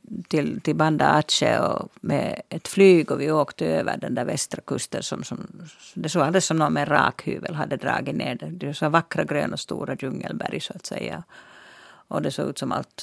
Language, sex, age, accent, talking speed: Finnish, female, 50-69, native, 210 wpm